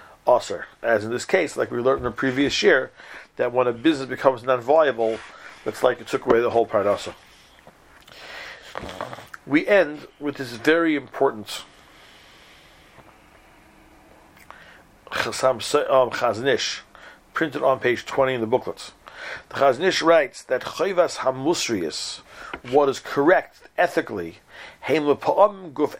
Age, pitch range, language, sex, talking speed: 50-69, 130-165 Hz, English, male, 120 wpm